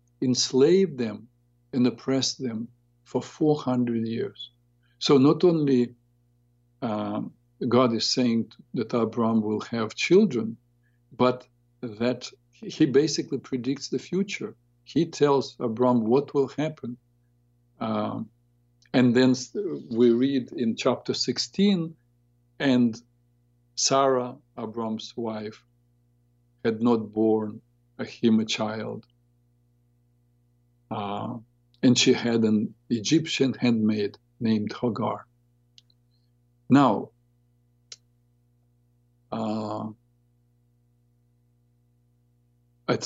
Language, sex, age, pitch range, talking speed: English, male, 50-69, 115-125 Hz, 90 wpm